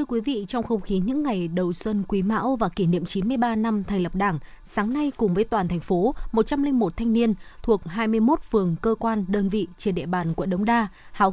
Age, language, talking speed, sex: 20-39, Vietnamese, 235 wpm, female